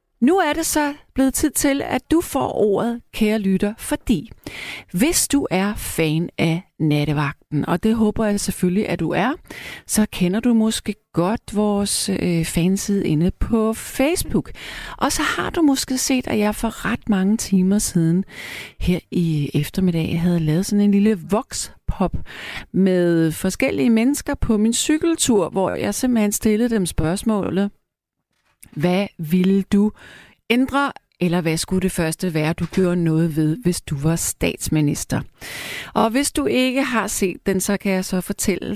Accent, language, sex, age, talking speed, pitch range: native, Danish, female, 40-59, 160 wpm, 175-245 Hz